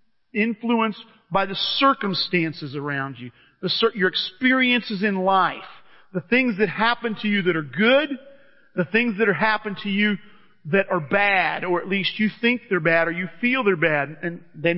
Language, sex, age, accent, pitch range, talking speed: English, male, 40-59, American, 180-225 Hz, 175 wpm